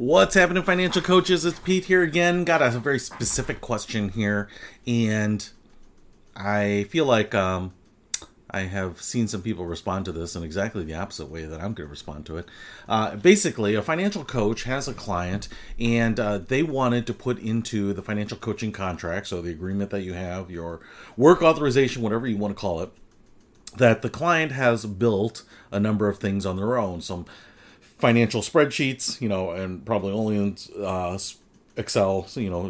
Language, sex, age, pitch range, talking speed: English, male, 40-59, 100-120 Hz, 180 wpm